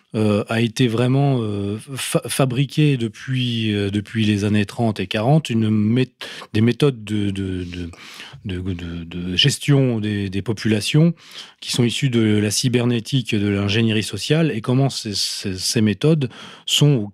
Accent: French